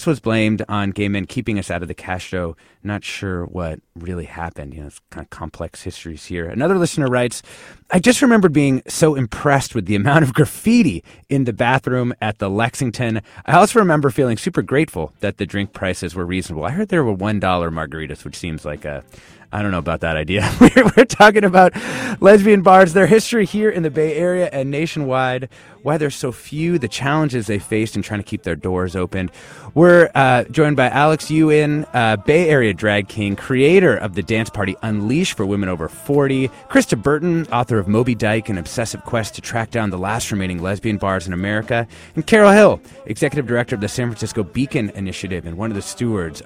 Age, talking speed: 30-49, 205 wpm